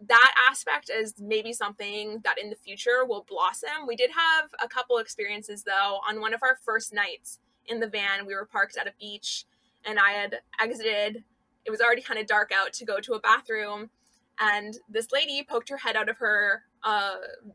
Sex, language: female, English